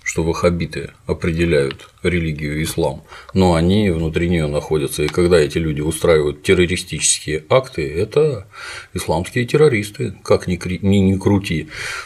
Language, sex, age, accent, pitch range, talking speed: Russian, male, 40-59, native, 80-95 Hz, 115 wpm